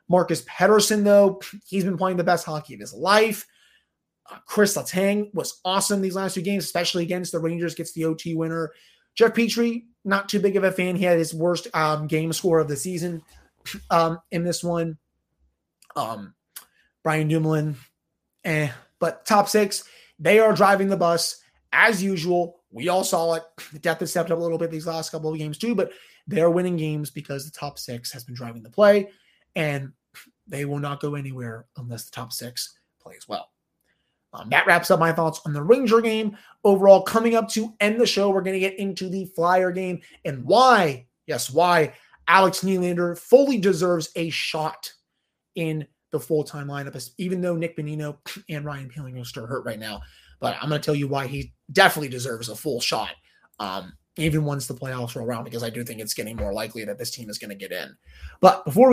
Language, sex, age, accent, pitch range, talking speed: English, male, 30-49, American, 145-190 Hz, 200 wpm